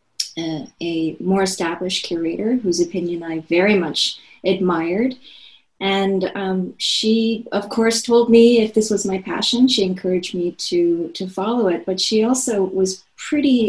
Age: 30-49